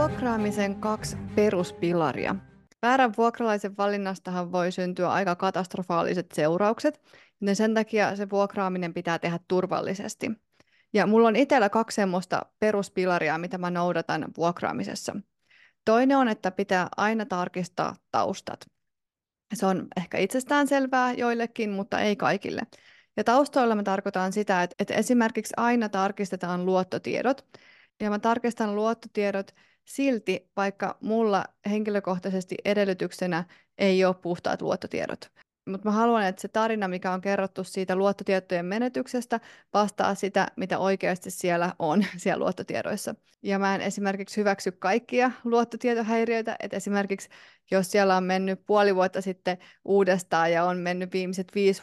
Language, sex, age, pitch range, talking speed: Finnish, female, 30-49, 180-215 Hz, 125 wpm